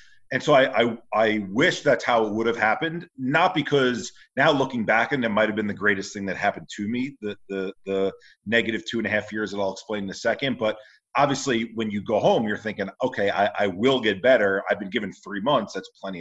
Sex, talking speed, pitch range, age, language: male, 240 wpm, 100-115 Hz, 40-59, English